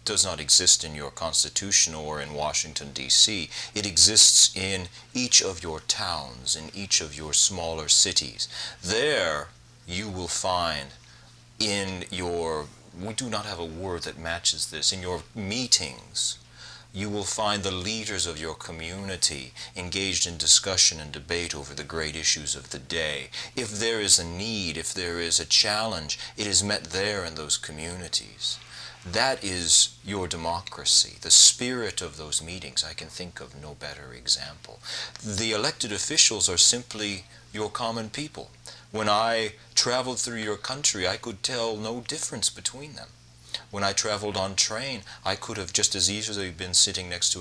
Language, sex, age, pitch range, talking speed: English, male, 30-49, 80-110 Hz, 165 wpm